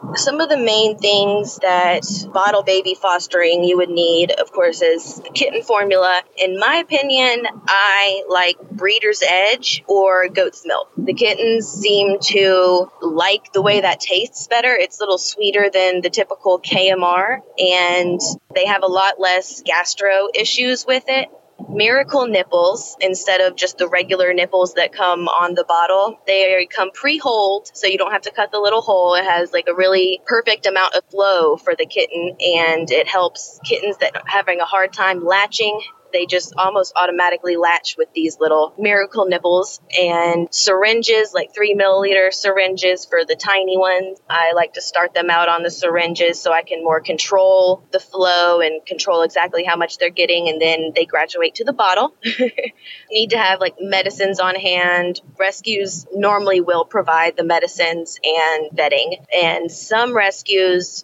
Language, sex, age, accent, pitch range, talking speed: English, female, 20-39, American, 175-210 Hz, 170 wpm